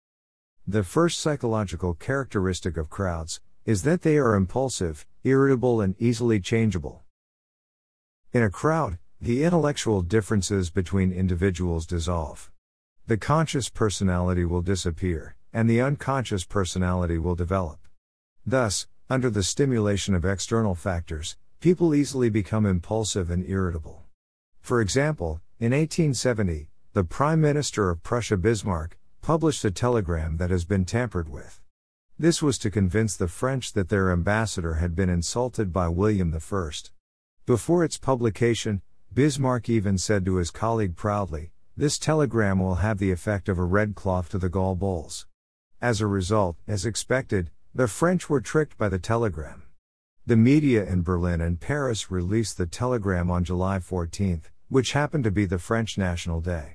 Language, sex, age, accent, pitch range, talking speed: English, male, 50-69, American, 90-115 Hz, 145 wpm